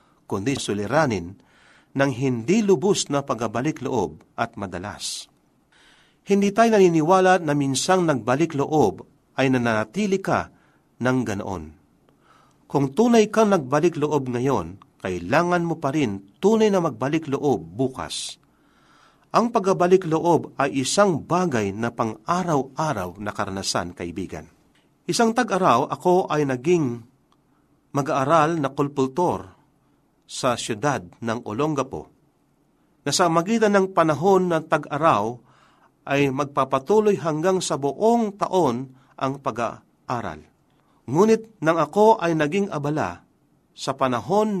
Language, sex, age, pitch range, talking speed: Filipino, male, 50-69, 125-180 Hz, 105 wpm